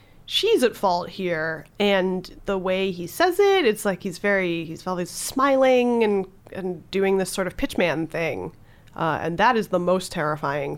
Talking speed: 185 wpm